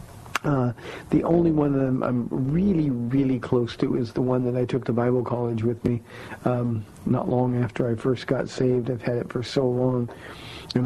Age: 50-69